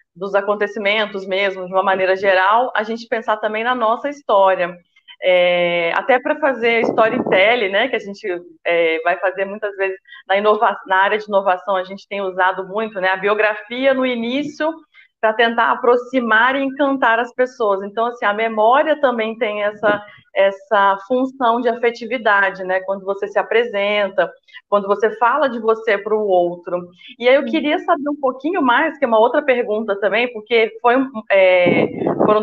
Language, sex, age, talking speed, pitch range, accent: Portuguese, female, 20-39, 175 wpm, 200-255 Hz, Brazilian